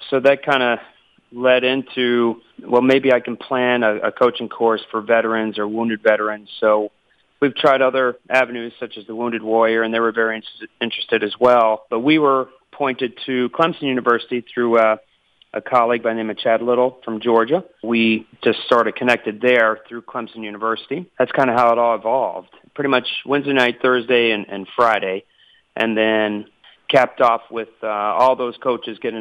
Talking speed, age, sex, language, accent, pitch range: 185 wpm, 40-59, male, English, American, 110-125 Hz